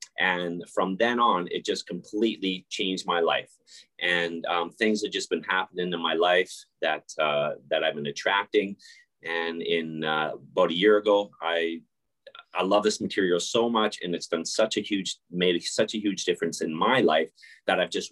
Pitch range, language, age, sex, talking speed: 90-125 Hz, English, 30-49, male, 190 wpm